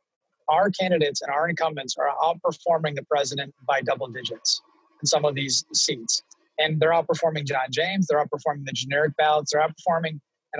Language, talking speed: English, 170 wpm